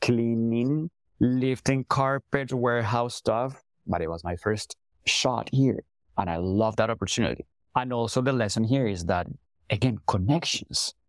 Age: 30-49